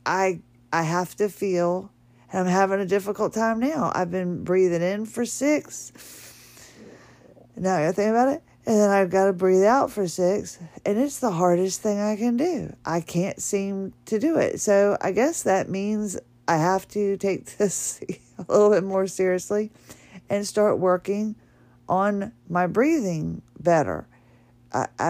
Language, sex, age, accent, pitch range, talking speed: English, female, 40-59, American, 145-195 Hz, 165 wpm